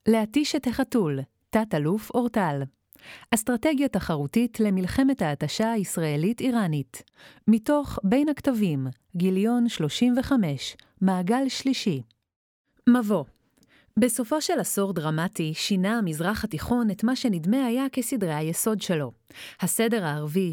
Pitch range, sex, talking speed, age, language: 170-230 Hz, female, 100 wpm, 30-49, Hebrew